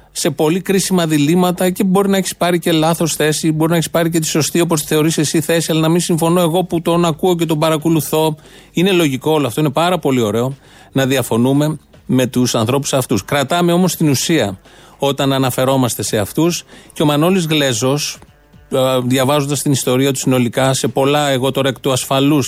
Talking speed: 190 wpm